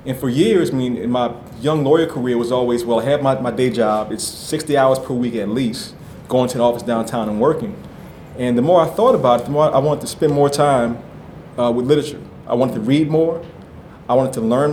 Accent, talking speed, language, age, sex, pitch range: American, 245 wpm, English, 30-49, male, 115-145 Hz